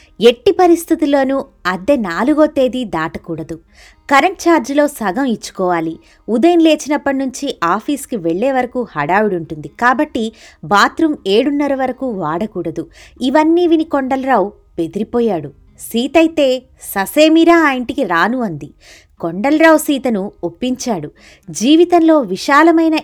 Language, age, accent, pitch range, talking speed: Telugu, 20-39, native, 195-300 Hz, 100 wpm